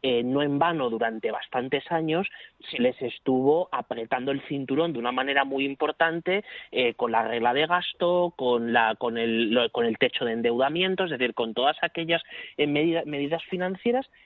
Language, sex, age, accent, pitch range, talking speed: Spanish, male, 30-49, Spanish, 130-180 Hz, 180 wpm